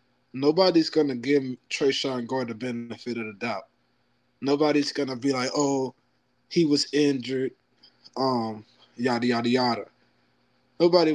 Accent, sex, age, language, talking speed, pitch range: American, male, 20-39, English, 130 wpm, 120-140 Hz